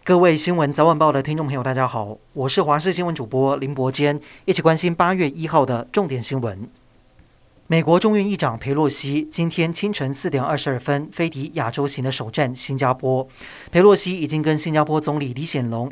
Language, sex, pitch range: Chinese, male, 135-165 Hz